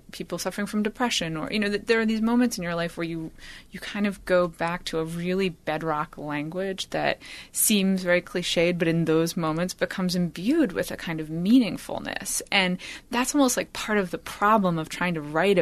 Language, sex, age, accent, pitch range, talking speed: English, female, 20-39, American, 165-215 Hz, 205 wpm